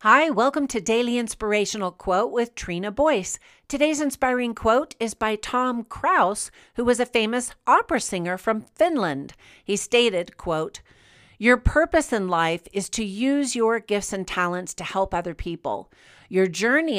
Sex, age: female, 50-69